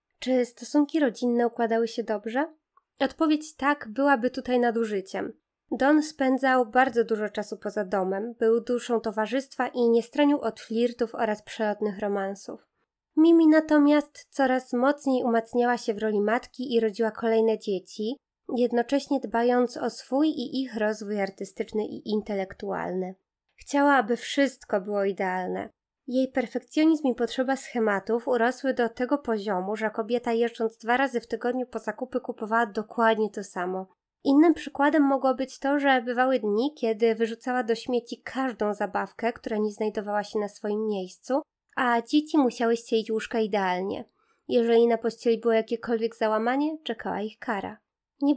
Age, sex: 20-39, female